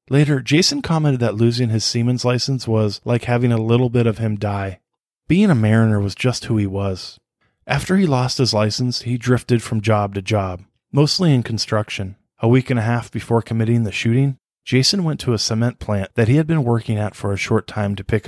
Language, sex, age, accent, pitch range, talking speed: English, male, 20-39, American, 105-130 Hz, 215 wpm